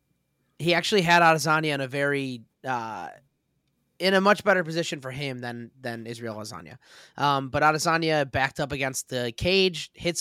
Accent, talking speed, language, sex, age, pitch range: American, 165 wpm, English, male, 20-39, 130-175 Hz